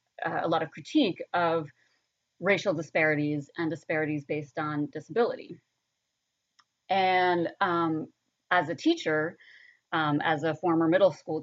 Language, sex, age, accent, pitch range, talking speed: English, female, 30-49, American, 160-205 Hz, 125 wpm